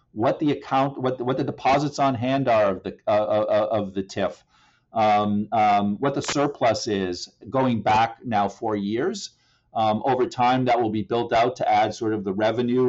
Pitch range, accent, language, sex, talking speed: 105-130 Hz, American, English, male, 200 wpm